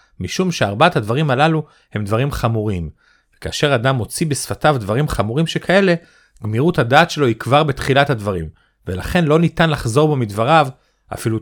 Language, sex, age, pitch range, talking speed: Hebrew, male, 40-59, 110-165 Hz, 145 wpm